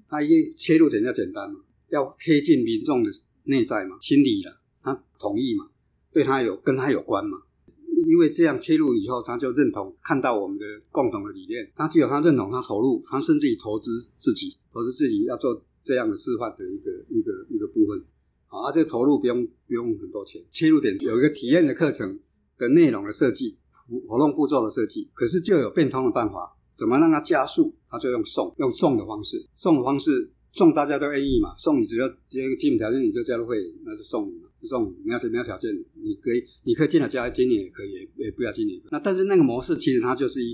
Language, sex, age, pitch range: Chinese, male, 50-69, 315-345 Hz